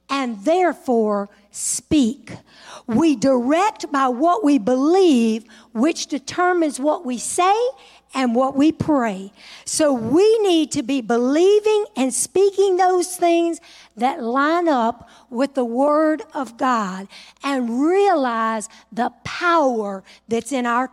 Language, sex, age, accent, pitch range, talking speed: English, female, 50-69, American, 235-330 Hz, 125 wpm